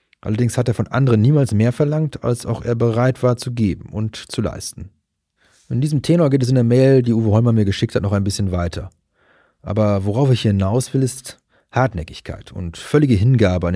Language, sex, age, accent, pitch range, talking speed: German, male, 30-49, German, 100-125 Hz, 205 wpm